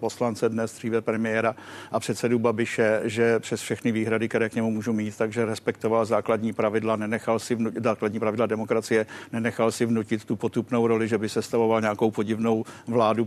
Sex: male